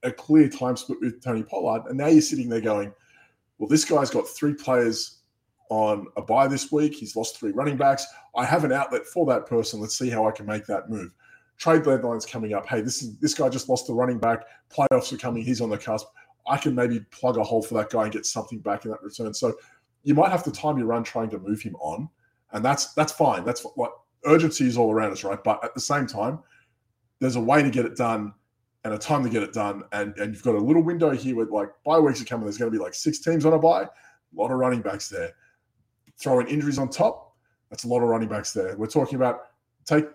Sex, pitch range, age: male, 115-150 Hz, 20-39